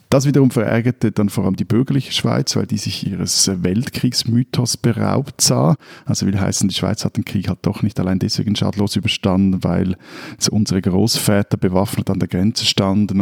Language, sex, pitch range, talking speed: German, male, 100-125 Hz, 175 wpm